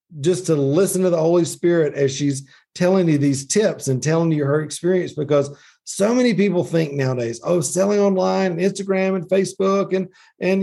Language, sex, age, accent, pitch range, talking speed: English, male, 50-69, American, 130-180 Hz, 185 wpm